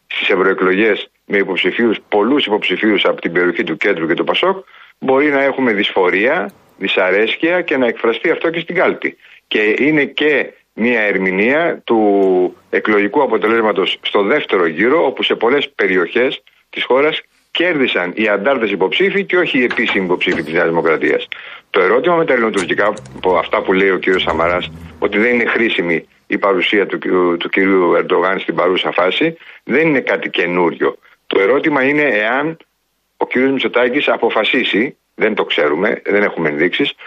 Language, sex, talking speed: Greek, male, 160 wpm